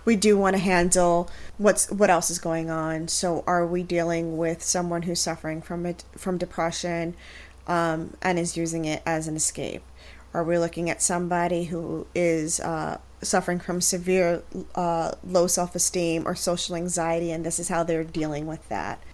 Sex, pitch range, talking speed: female, 165-195 Hz, 175 wpm